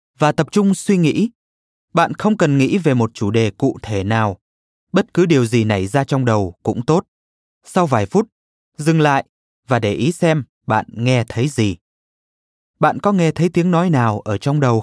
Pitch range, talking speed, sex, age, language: 110-165 Hz, 200 wpm, male, 20-39, Vietnamese